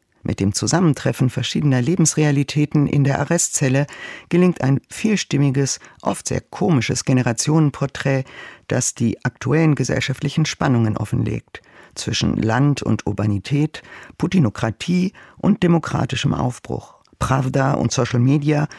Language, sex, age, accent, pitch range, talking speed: German, male, 50-69, German, 120-155 Hz, 105 wpm